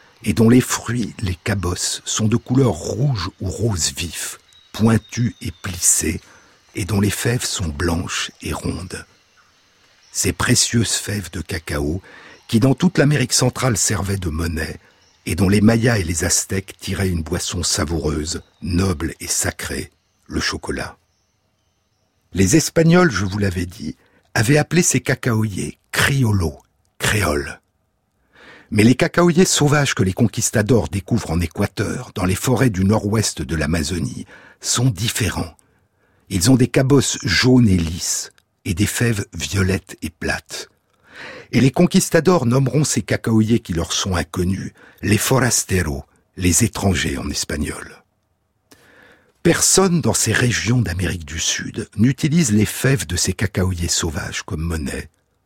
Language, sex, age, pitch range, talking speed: French, male, 60-79, 90-125 Hz, 145 wpm